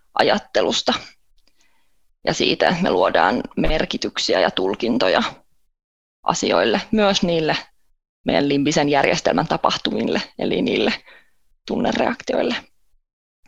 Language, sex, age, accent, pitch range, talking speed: Finnish, female, 20-39, native, 150-175 Hz, 80 wpm